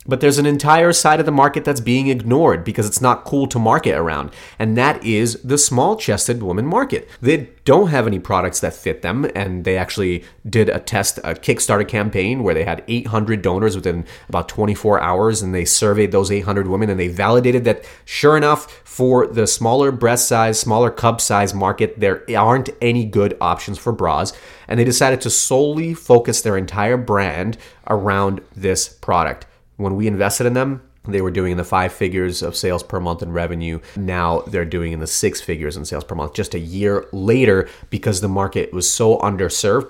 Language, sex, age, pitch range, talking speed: English, male, 30-49, 95-120 Hz, 195 wpm